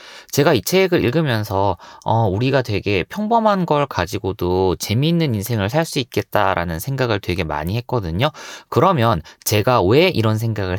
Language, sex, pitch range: Korean, male, 100-165 Hz